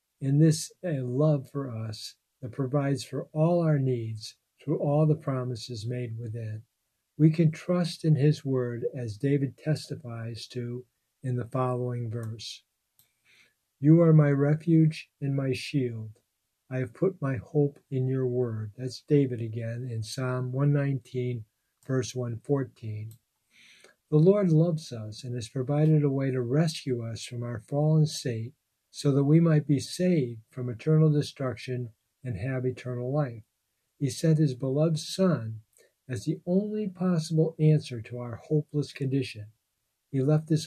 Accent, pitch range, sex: American, 120-150 Hz, male